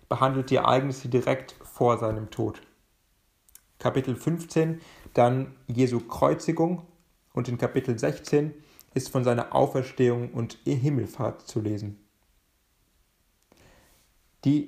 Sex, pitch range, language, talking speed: male, 120-155 Hz, German, 100 wpm